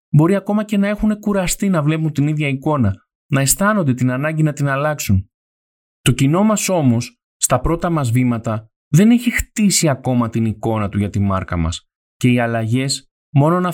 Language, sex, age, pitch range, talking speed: Greek, male, 20-39, 115-155 Hz, 185 wpm